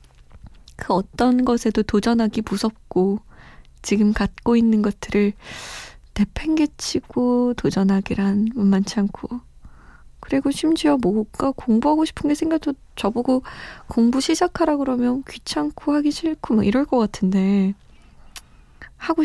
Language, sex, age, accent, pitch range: Korean, female, 20-39, native, 195-255 Hz